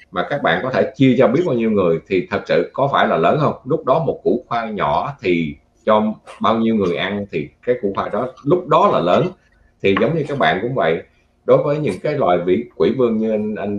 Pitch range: 95-125 Hz